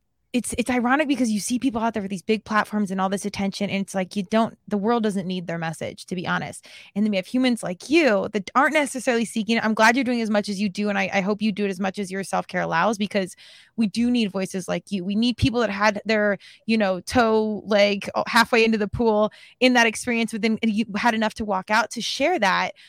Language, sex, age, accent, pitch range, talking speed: English, female, 20-39, American, 200-240 Hz, 260 wpm